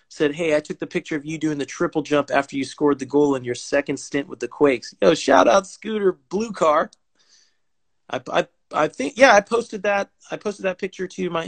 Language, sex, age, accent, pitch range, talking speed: English, male, 30-49, American, 125-170 Hz, 230 wpm